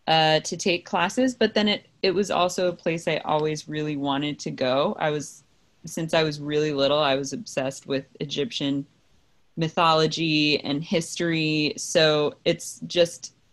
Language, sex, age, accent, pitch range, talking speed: English, female, 20-39, American, 145-170 Hz, 160 wpm